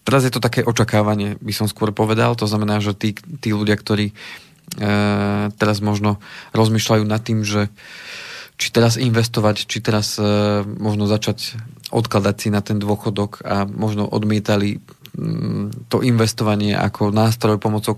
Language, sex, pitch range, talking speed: Slovak, male, 105-115 Hz, 150 wpm